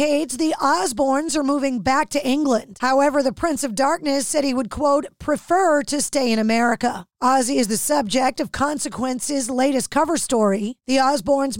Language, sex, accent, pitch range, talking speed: English, female, American, 245-290 Hz, 165 wpm